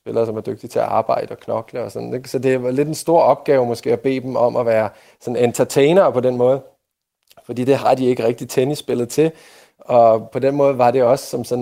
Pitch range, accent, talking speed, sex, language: 120-150 Hz, native, 250 wpm, male, Danish